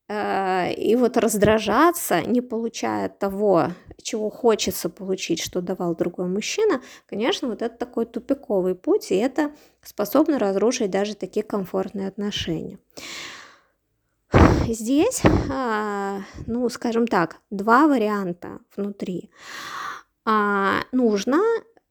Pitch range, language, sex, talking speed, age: 200-265 Hz, Russian, female, 95 wpm, 20-39